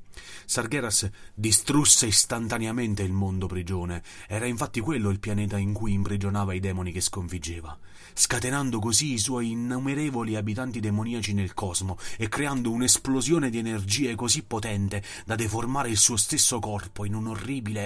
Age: 30-49